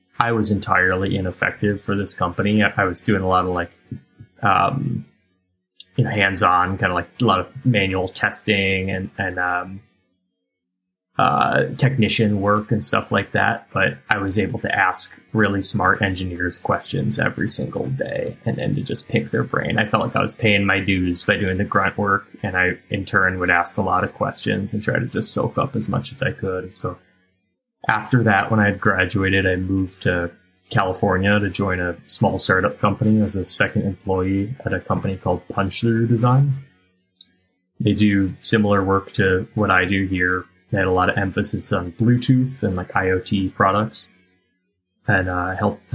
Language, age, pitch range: English, 20-39, 90-105 Hz